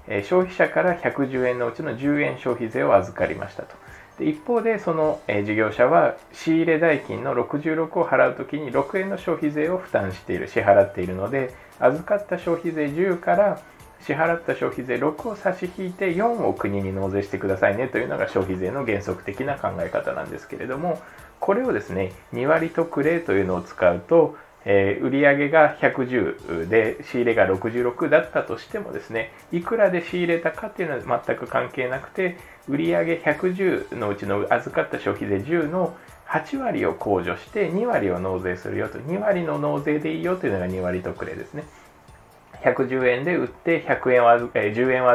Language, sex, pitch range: Japanese, male, 100-170 Hz